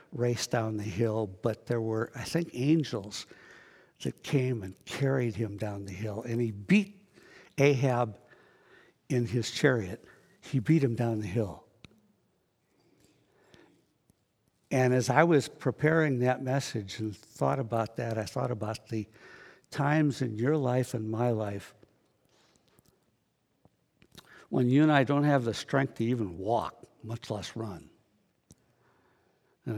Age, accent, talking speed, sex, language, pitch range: 60-79, American, 135 wpm, male, English, 110-130 Hz